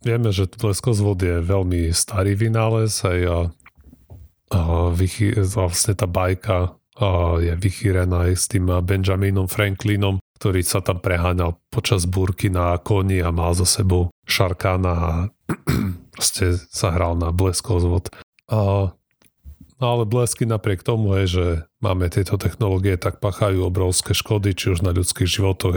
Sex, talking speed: male, 130 wpm